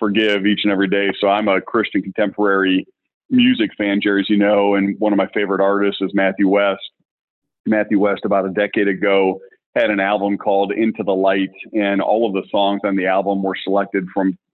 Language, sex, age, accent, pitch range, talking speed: English, male, 40-59, American, 95-105 Hz, 200 wpm